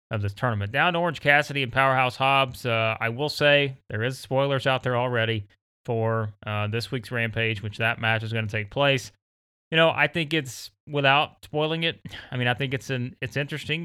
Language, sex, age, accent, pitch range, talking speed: English, male, 30-49, American, 110-130 Hz, 210 wpm